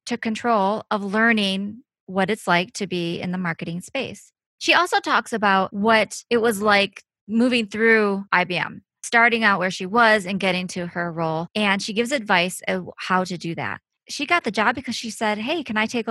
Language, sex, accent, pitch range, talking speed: English, female, American, 180-225 Hz, 200 wpm